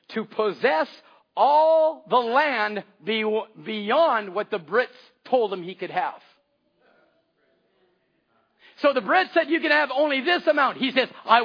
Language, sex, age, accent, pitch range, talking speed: English, male, 50-69, American, 220-295 Hz, 140 wpm